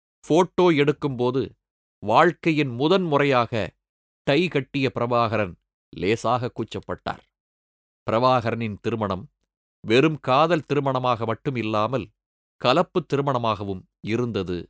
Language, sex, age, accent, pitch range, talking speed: Tamil, male, 30-49, native, 95-135 Hz, 80 wpm